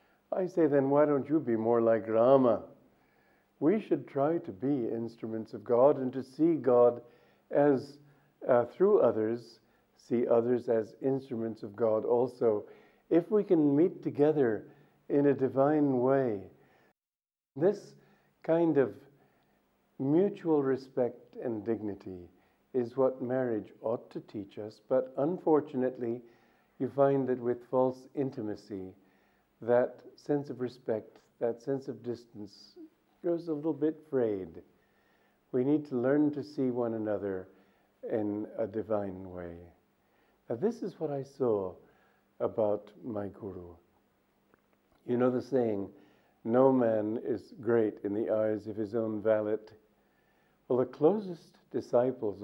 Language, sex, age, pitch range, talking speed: English, male, 50-69, 110-140 Hz, 135 wpm